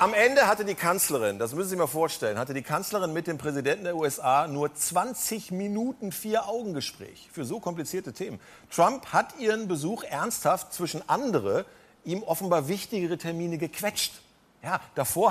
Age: 50-69